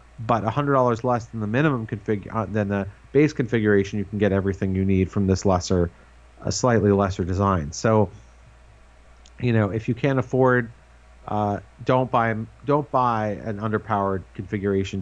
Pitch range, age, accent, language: 95-120 Hz, 40-59, American, English